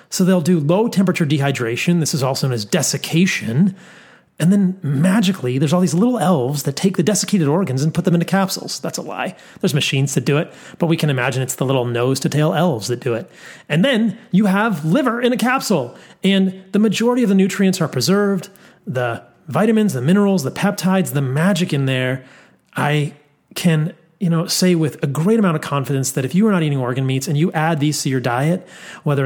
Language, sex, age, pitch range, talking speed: English, male, 30-49, 130-180 Hz, 210 wpm